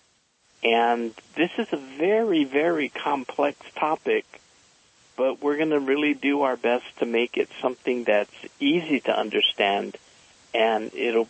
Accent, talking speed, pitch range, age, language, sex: American, 140 wpm, 120-195 Hz, 50-69, English, male